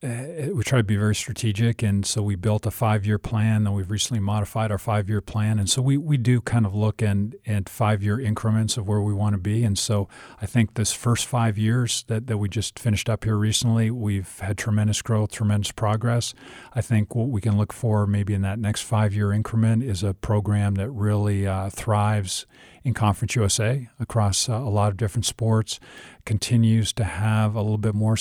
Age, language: 40-59, English